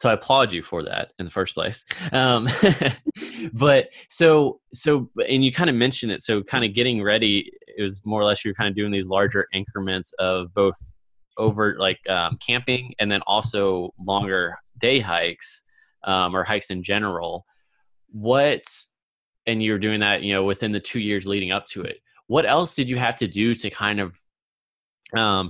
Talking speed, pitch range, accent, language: 190 wpm, 95-120 Hz, American, English